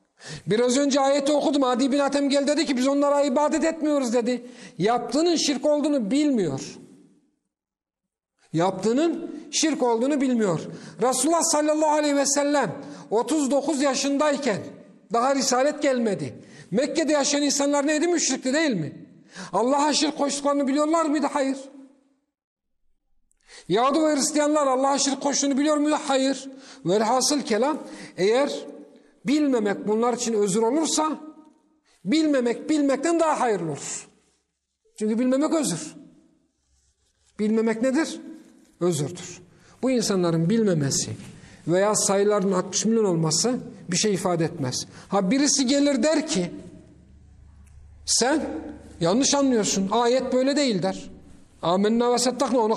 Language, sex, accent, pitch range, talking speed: Turkish, male, native, 215-290 Hz, 115 wpm